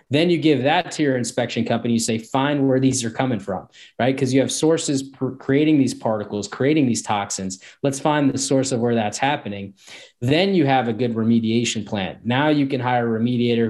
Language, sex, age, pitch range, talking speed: English, male, 20-39, 115-135 Hz, 210 wpm